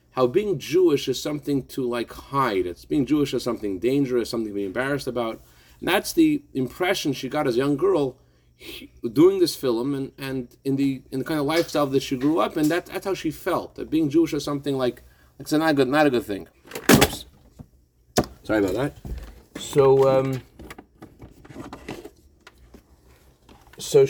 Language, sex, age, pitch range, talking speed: English, male, 40-59, 100-160 Hz, 180 wpm